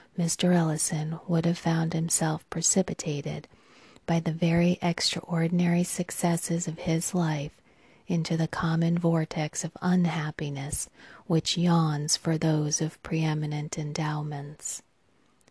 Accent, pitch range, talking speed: American, 155-175 Hz, 110 wpm